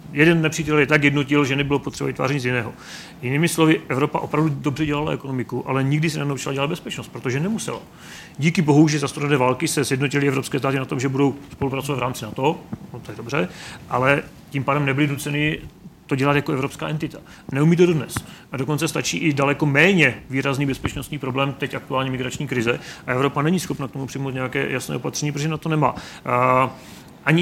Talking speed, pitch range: 195 wpm, 135-155 Hz